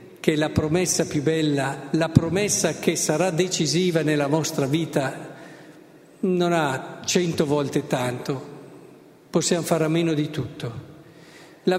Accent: native